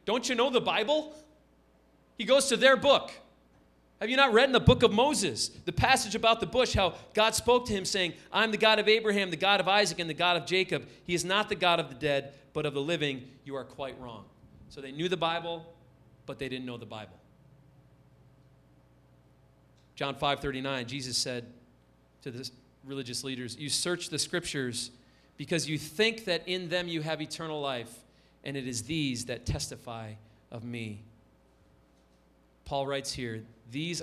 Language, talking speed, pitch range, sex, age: English, 185 wpm, 120-185 Hz, male, 40-59